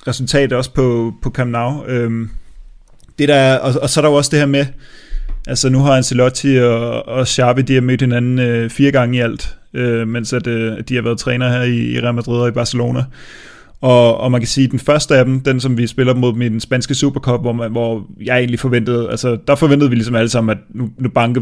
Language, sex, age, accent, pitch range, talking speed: Danish, male, 20-39, native, 120-140 Hz, 235 wpm